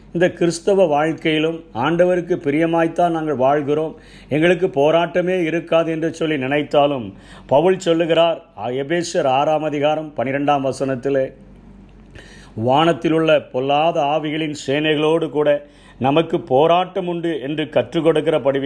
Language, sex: Tamil, male